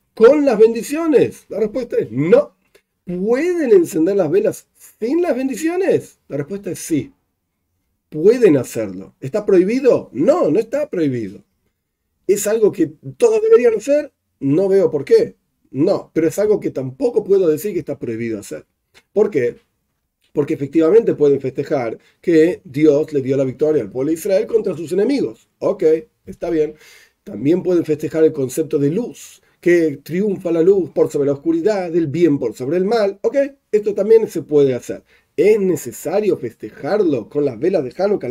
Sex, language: male, Spanish